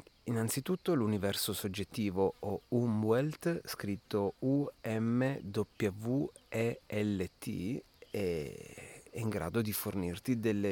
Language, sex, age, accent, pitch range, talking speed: Italian, male, 30-49, native, 95-120 Hz, 100 wpm